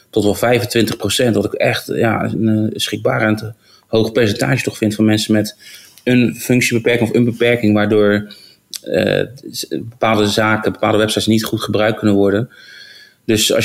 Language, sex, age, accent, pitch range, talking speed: Dutch, male, 30-49, Dutch, 100-115 Hz, 155 wpm